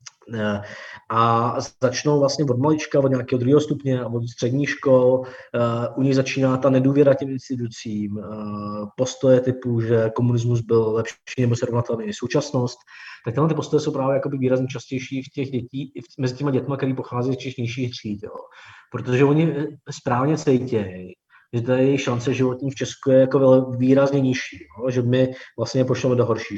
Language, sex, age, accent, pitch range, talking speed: Czech, male, 20-39, native, 120-135 Hz, 165 wpm